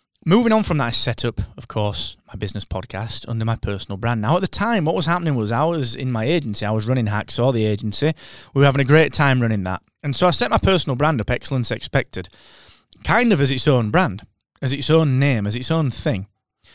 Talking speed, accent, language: 240 wpm, British, English